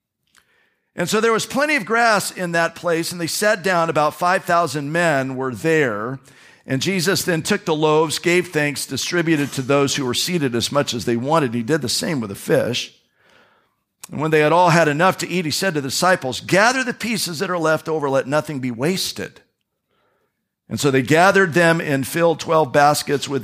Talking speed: 205 wpm